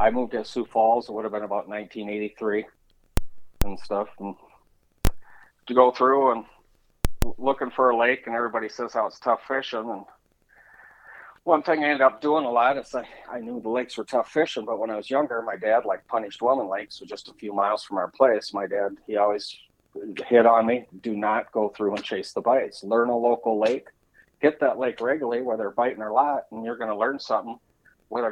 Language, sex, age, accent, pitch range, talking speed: English, male, 40-59, American, 105-120 Hz, 215 wpm